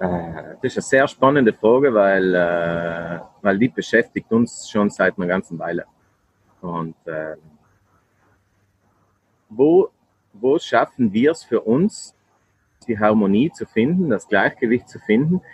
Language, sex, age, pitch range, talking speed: German, male, 40-59, 95-135 Hz, 125 wpm